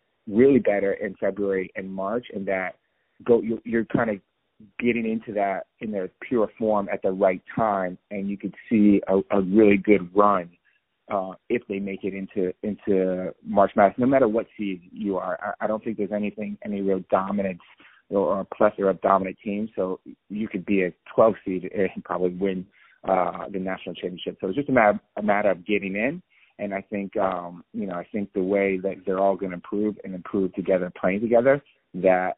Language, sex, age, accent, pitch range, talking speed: English, male, 30-49, American, 95-105 Hz, 200 wpm